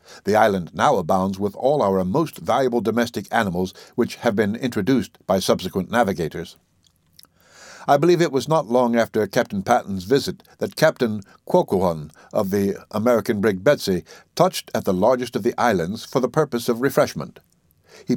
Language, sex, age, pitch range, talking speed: English, male, 60-79, 95-135 Hz, 160 wpm